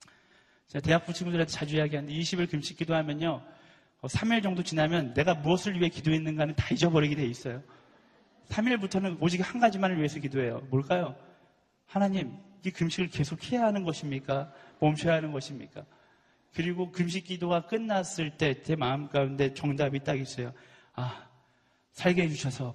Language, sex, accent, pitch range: Korean, male, native, 140-190 Hz